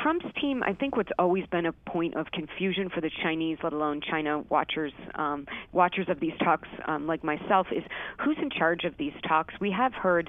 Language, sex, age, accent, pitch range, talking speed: English, female, 40-59, American, 160-190 Hz, 210 wpm